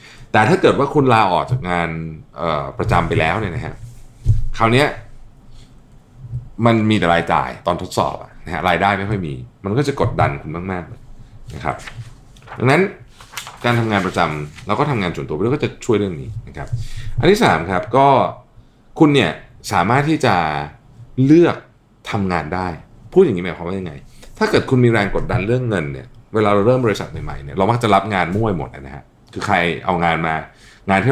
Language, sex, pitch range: Thai, male, 95-125 Hz